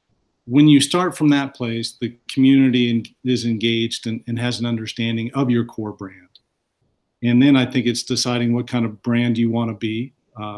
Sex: male